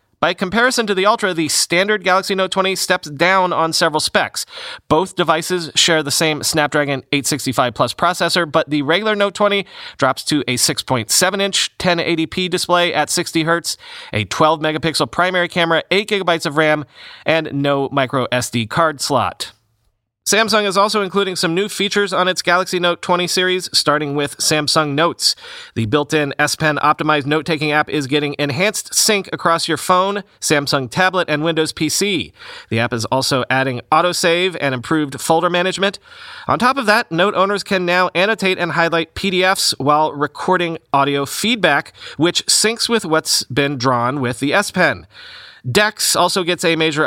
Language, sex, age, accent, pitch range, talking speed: English, male, 30-49, American, 145-185 Hz, 160 wpm